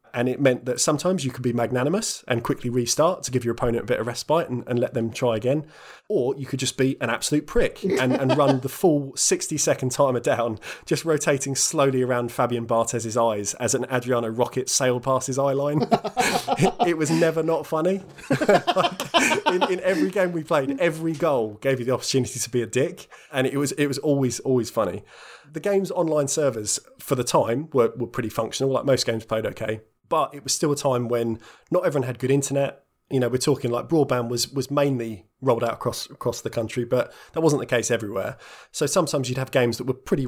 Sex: male